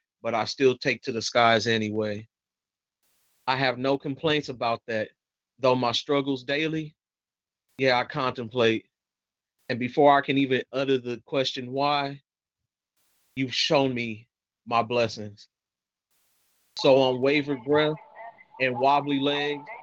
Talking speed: 125 wpm